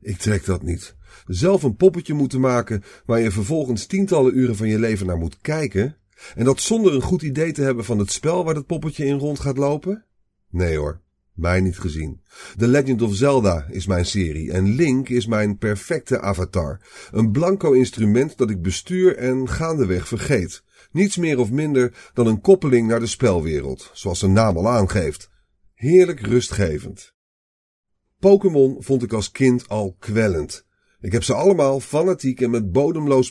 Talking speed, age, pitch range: 175 wpm, 40-59, 100-140 Hz